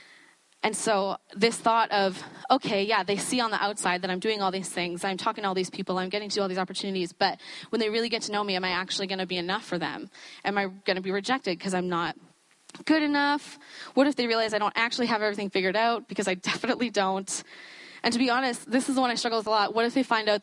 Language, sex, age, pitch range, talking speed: English, female, 10-29, 190-245 Hz, 265 wpm